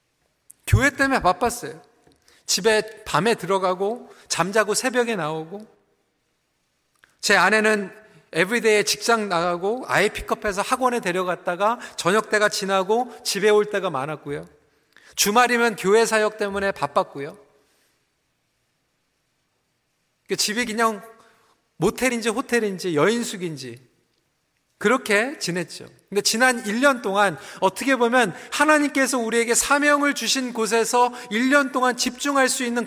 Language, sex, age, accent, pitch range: Korean, male, 40-59, native, 205-275 Hz